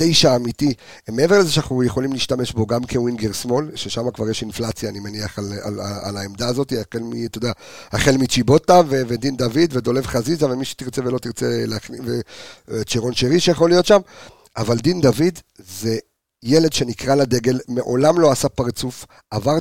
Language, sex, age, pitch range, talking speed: Hebrew, male, 50-69, 115-140 Hz, 170 wpm